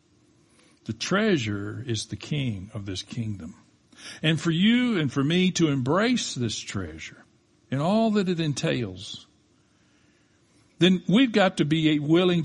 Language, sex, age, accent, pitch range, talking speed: English, male, 60-79, American, 115-170 Hz, 140 wpm